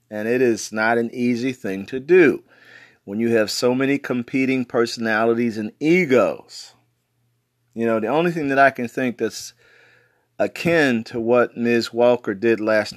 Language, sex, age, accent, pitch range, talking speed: English, male, 40-59, American, 110-130 Hz, 160 wpm